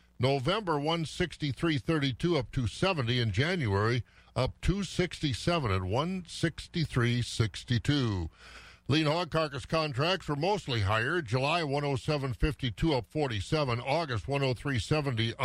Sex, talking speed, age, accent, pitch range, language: male, 105 wpm, 50-69, American, 120-155 Hz, English